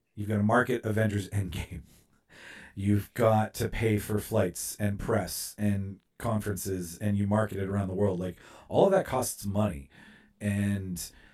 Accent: American